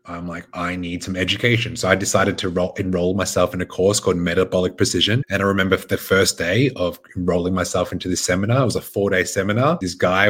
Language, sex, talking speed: English, male, 220 wpm